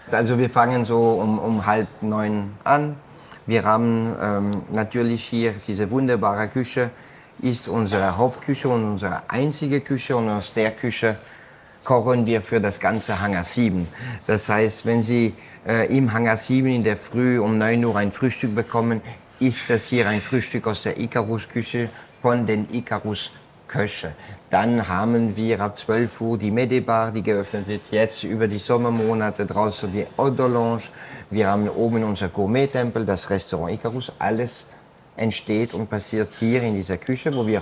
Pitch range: 105-120 Hz